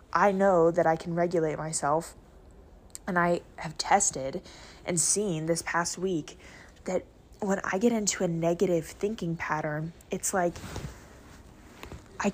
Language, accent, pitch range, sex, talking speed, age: English, American, 155-195 Hz, female, 135 wpm, 20-39